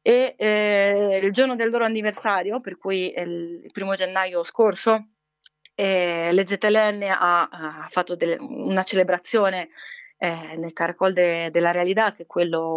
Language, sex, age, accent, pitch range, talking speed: Italian, female, 30-49, native, 180-215 Hz, 140 wpm